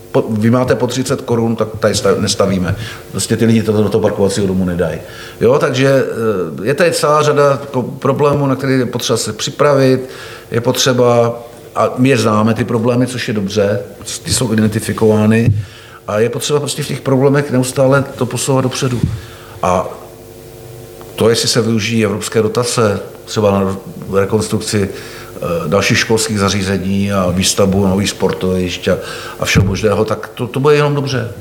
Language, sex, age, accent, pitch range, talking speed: Czech, male, 50-69, native, 105-120 Hz, 155 wpm